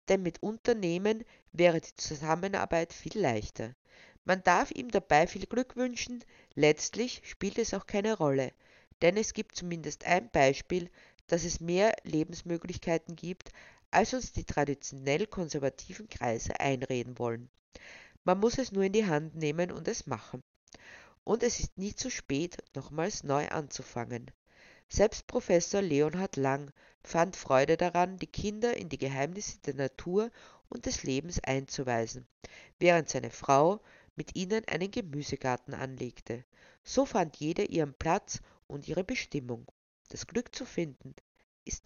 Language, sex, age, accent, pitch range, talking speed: German, female, 50-69, Austrian, 135-190 Hz, 140 wpm